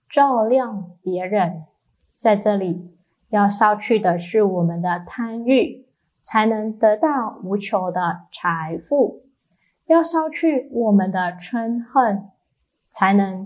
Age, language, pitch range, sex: 10-29, Chinese, 185-245 Hz, female